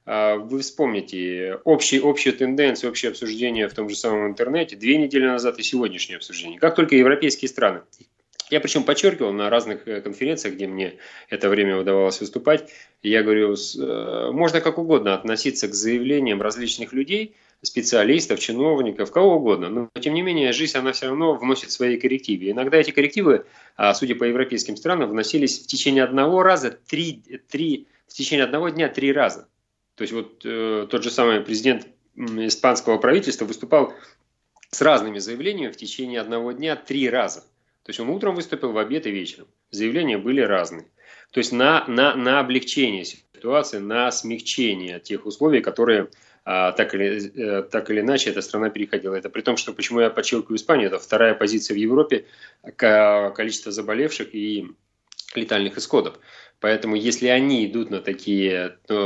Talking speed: 160 wpm